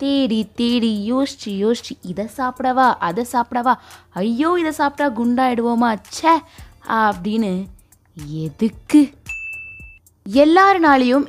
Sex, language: female, Tamil